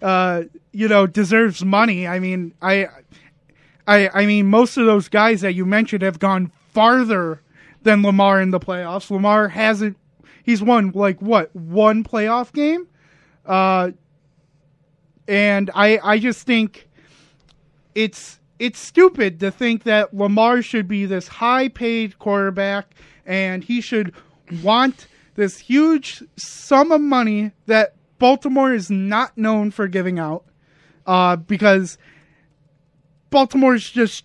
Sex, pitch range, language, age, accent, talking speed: male, 170-225 Hz, English, 30-49, American, 135 wpm